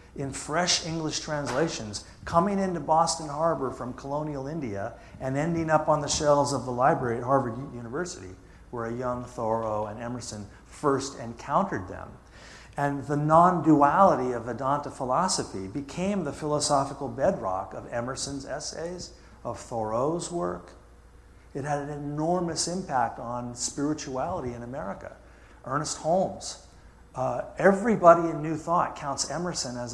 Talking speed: 130 wpm